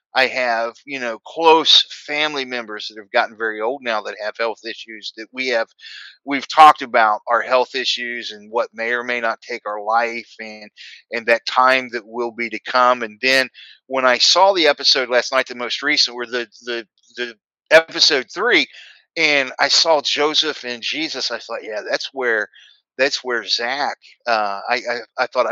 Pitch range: 115-135 Hz